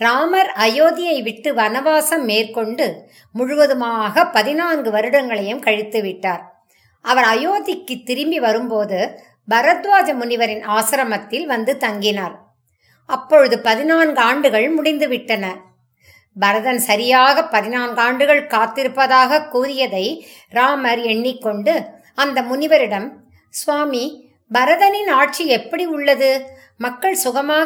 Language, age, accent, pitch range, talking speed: English, 50-69, Indian, 220-300 Hz, 80 wpm